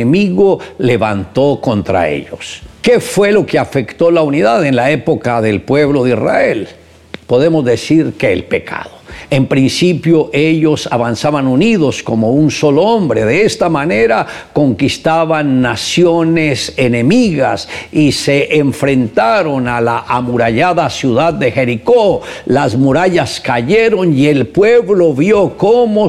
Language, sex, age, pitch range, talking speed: Spanish, male, 60-79, 130-175 Hz, 125 wpm